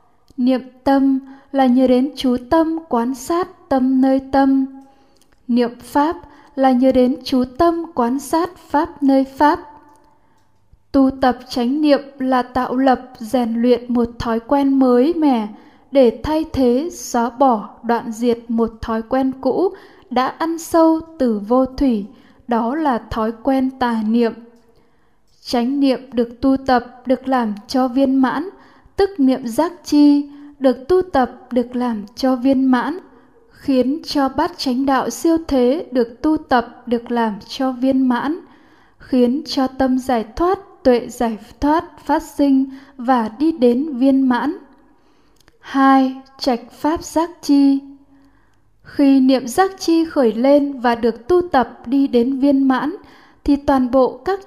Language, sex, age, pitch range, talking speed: Vietnamese, female, 10-29, 245-290 Hz, 150 wpm